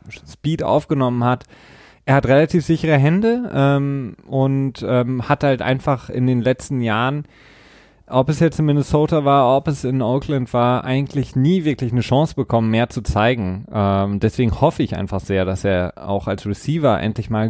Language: German